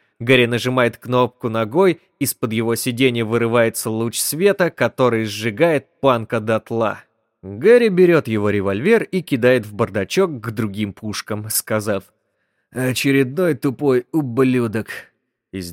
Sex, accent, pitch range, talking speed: male, native, 110-145 Hz, 115 wpm